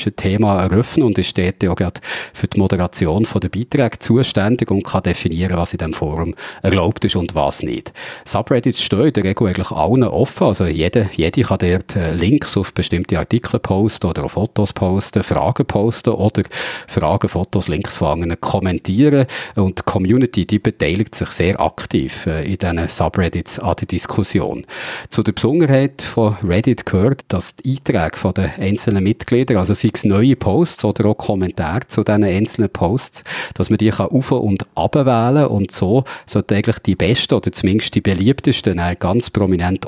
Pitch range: 95-115 Hz